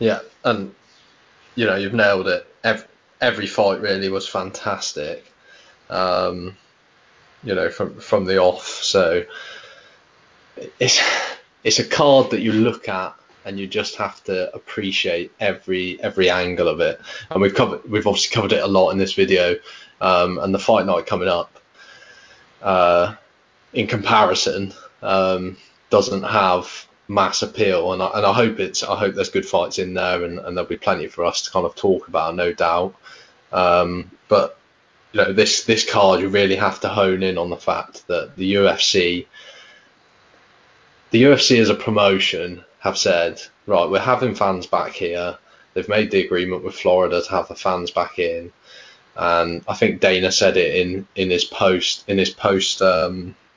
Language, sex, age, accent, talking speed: English, male, 20-39, British, 170 wpm